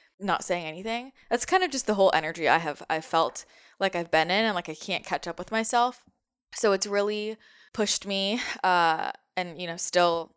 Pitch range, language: 165-210 Hz, English